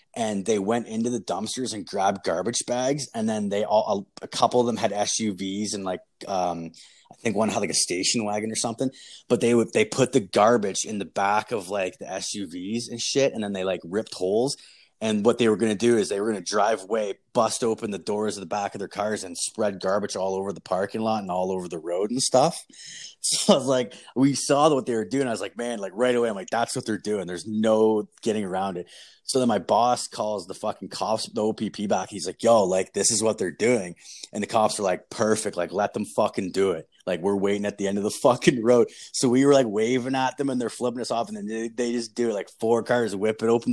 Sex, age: male, 20-39